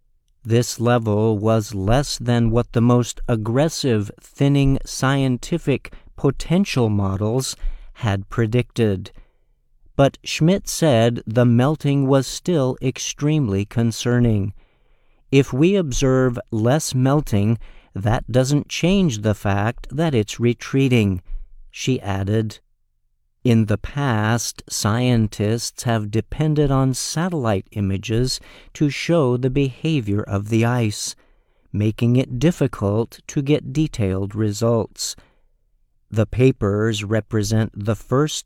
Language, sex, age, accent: Chinese, male, 50-69, American